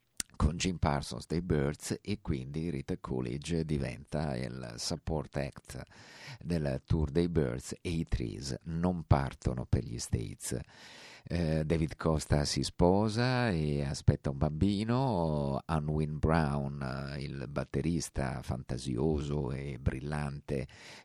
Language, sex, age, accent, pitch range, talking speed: Italian, male, 50-69, native, 70-80 Hz, 115 wpm